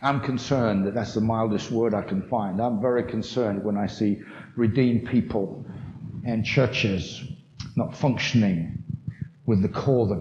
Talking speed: 155 wpm